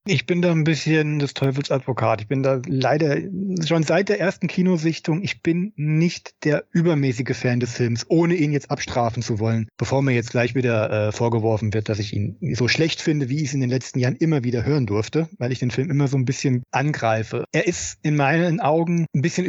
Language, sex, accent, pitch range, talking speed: German, male, German, 135-170 Hz, 220 wpm